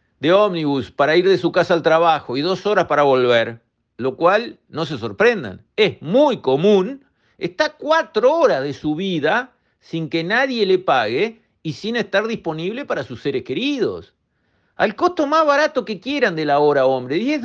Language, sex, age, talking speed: Spanish, male, 50-69, 180 wpm